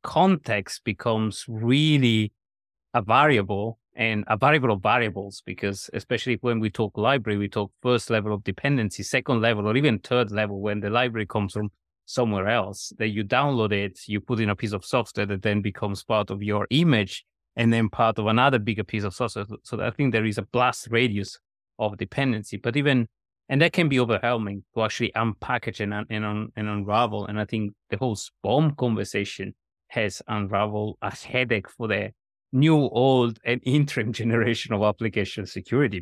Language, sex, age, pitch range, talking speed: English, male, 30-49, 105-125 Hz, 180 wpm